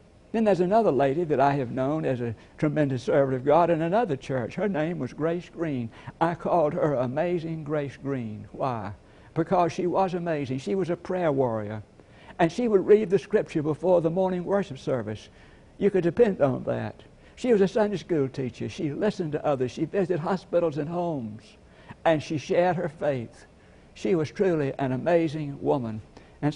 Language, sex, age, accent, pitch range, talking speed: English, male, 60-79, American, 125-170 Hz, 185 wpm